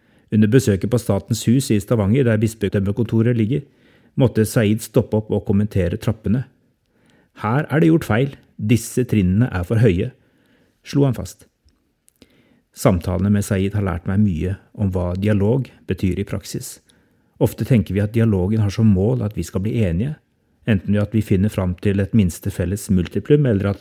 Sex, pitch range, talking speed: male, 95-115 Hz, 175 wpm